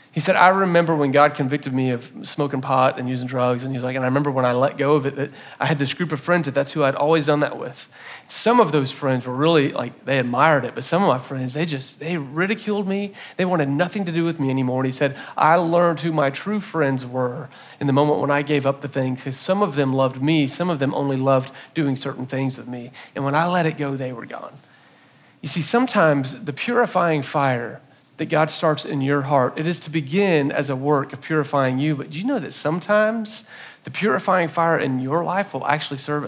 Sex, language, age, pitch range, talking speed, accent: male, English, 40-59, 135-175 Hz, 250 wpm, American